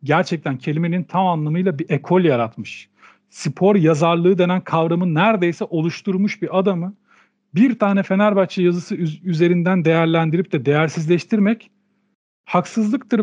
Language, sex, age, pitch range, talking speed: Turkish, male, 40-59, 155-205 Hz, 110 wpm